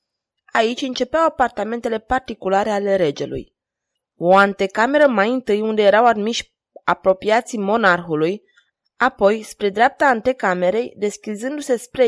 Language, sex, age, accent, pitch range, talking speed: Romanian, female, 20-39, native, 195-250 Hz, 105 wpm